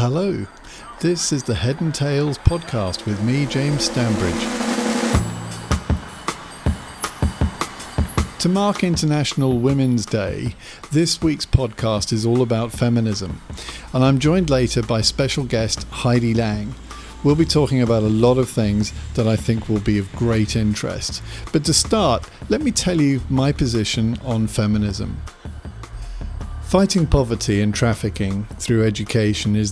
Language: English